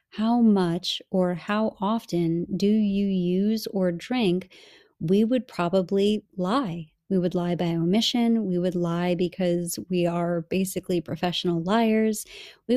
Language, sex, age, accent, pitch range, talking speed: English, female, 30-49, American, 175-215 Hz, 135 wpm